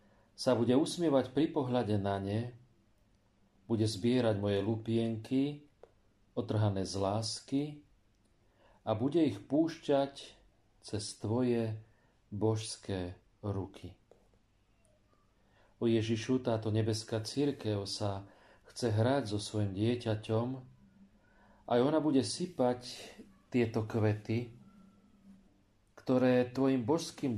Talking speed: 90 wpm